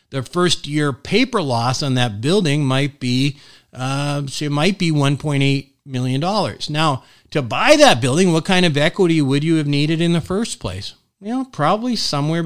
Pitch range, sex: 125-155 Hz, male